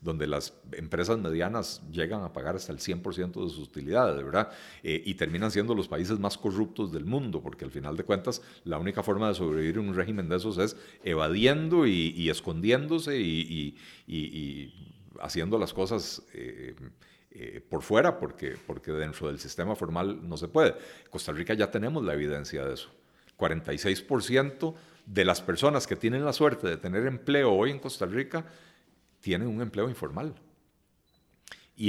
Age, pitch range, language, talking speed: 50-69, 85-145 Hz, Spanish, 175 wpm